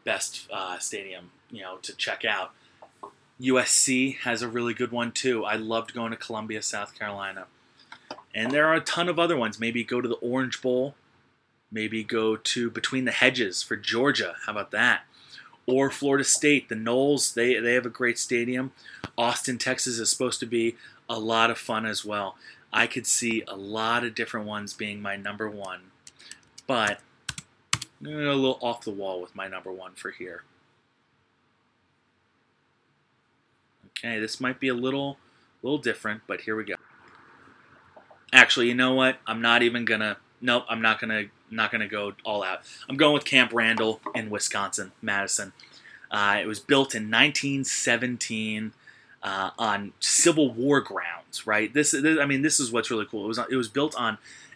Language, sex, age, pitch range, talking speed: English, male, 20-39, 110-130 Hz, 175 wpm